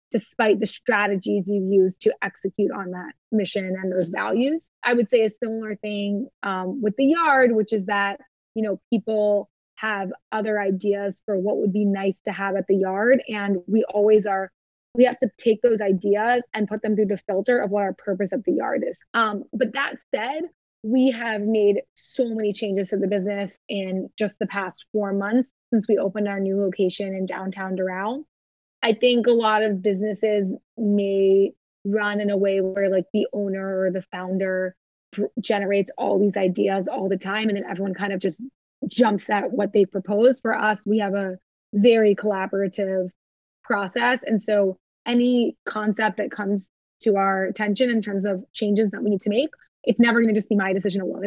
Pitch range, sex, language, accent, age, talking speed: 195-225 Hz, female, English, American, 20-39, 195 wpm